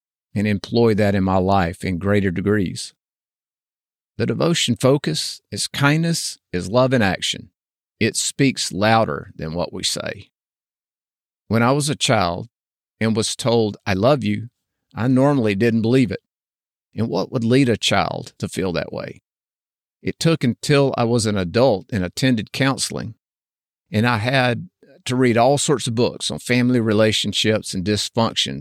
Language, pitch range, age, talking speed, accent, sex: English, 100-130 Hz, 50-69, 155 wpm, American, male